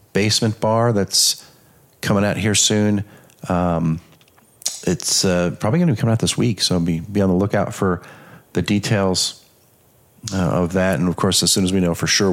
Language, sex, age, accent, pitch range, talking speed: English, male, 40-59, American, 95-120 Hz, 195 wpm